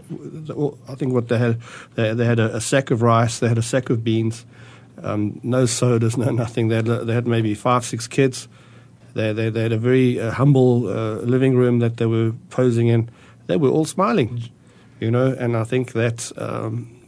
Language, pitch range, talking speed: English, 115-135 Hz, 180 wpm